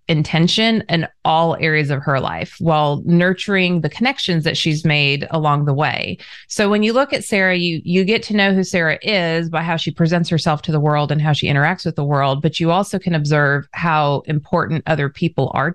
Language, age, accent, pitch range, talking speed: English, 30-49, American, 150-195 Hz, 215 wpm